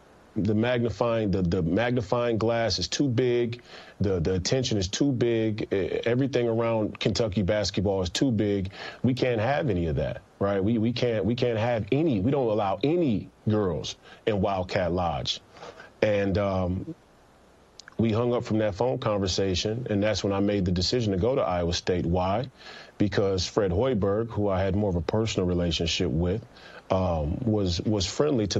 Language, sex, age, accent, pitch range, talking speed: English, male, 30-49, American, 95-115 Hz, 175 wpm